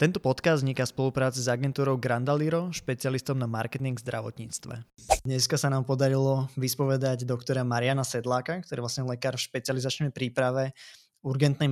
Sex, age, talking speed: male, 20-39, 145 wpm